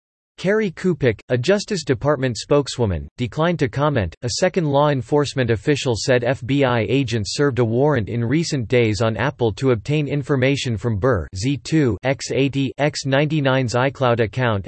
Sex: male